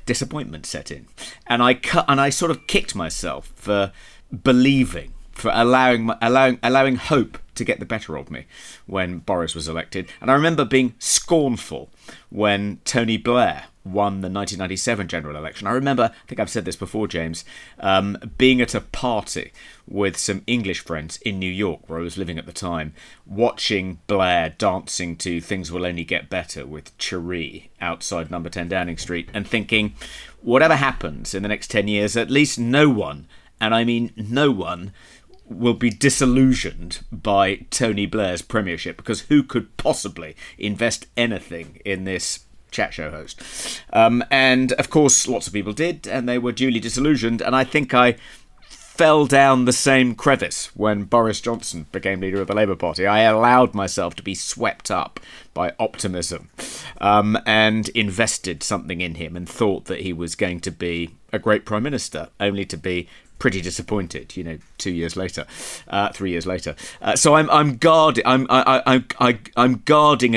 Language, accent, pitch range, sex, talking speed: English, British, 90-125 Hz, male, 175 wpm